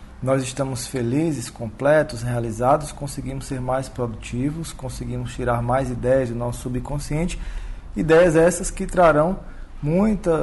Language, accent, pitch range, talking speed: Portuguese, Brazilian, 120-150 Hz, 120 wpm